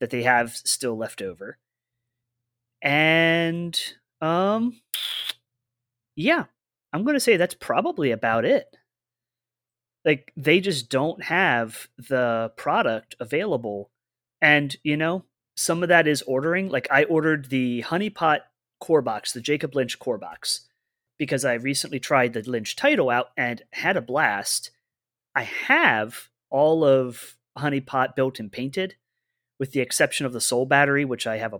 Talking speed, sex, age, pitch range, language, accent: 145 wpm, male, 30-49, 120-165 Hz, English, American